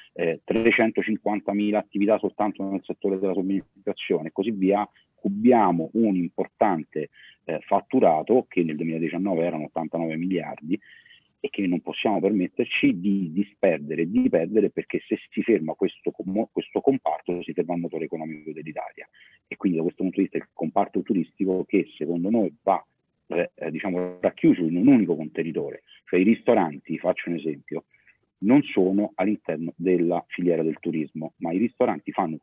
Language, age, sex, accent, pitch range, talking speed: Italian, 40-59, male, native, 85-105 Hz, 150 wpm